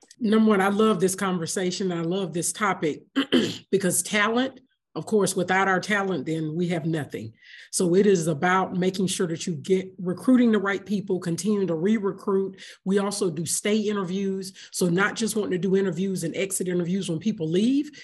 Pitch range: 175-205 Hz